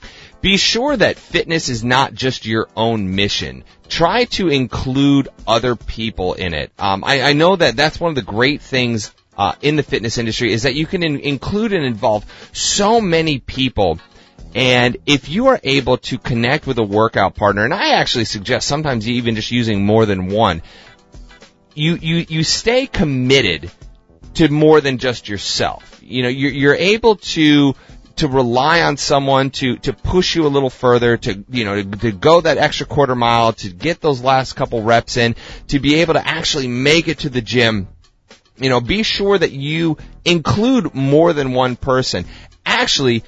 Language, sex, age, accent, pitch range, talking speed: English, male, 30-49, American, 115-150 Hz, 185 wpm